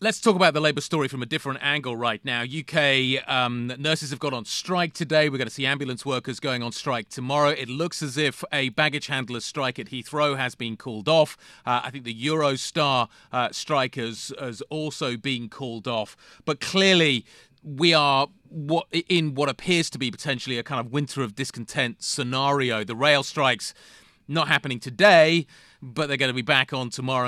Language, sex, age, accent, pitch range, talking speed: English, male, 30-49, British, 125-155 Hz, 190 wpm